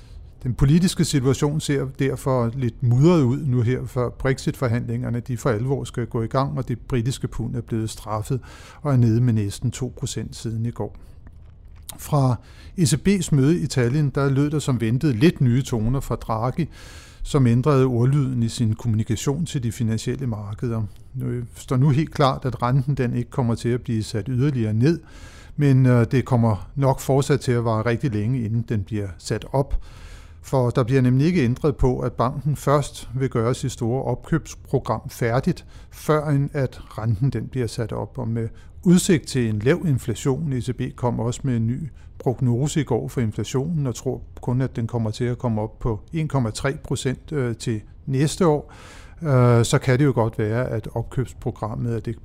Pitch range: 115-135 Hz